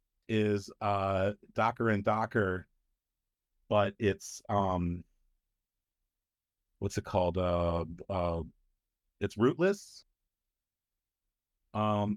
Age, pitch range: 50-69, 90-110 Hz